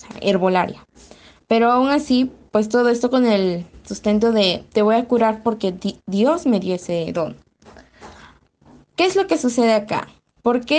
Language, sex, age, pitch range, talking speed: Spanish, female, 20-39, 200-240 Hz, 155 wpm